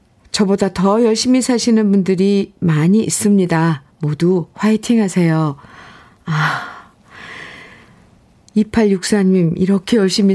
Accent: native